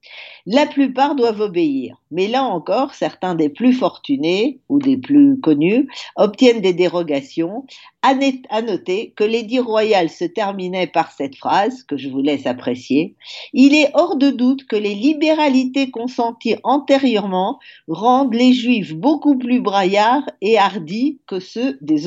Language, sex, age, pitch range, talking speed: French, female, 50-69, 180-265 Hz, 145 wpm